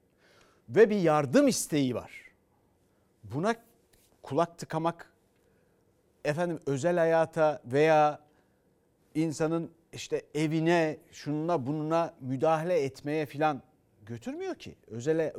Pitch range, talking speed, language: 155-220 Hz, 90 wpm, Turkish